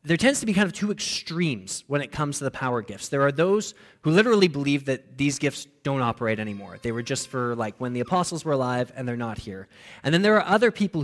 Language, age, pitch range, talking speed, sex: English, 20-39, 125-165 Hz, 255 wpm, male